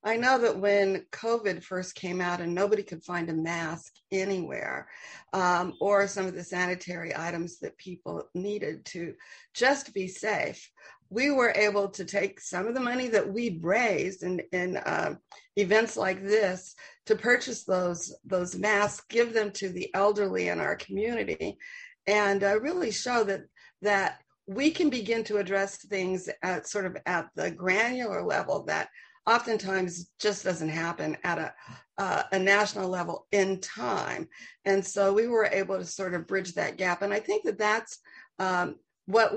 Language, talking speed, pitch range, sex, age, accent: English, 170 wpm, 185-225 Hz, female, 50-69, American